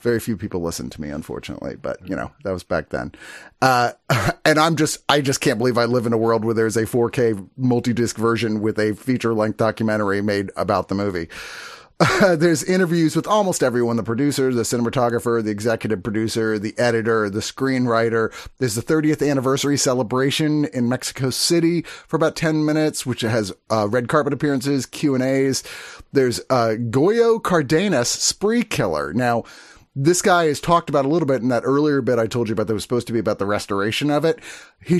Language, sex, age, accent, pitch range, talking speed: English, male, 30-49, American, 115-150 Hz, 195 wpm